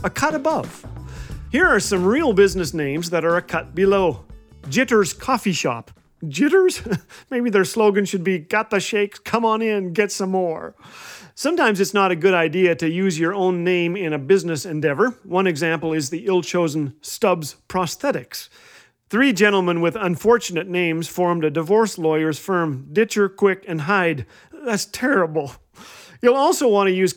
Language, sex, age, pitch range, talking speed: English, male, 40-59, 170-225 Hz, 170 wpm